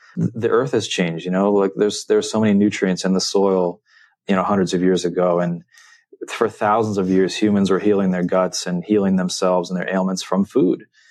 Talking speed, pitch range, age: 210 wpm, 90-105 Hz, 30-49